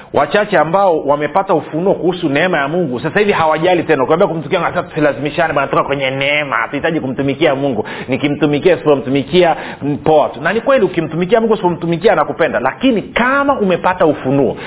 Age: 40-59